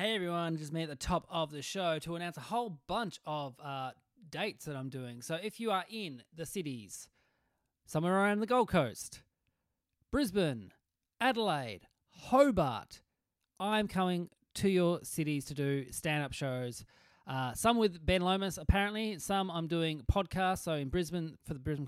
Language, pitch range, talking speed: English, 135-185 Hz, 165 wpm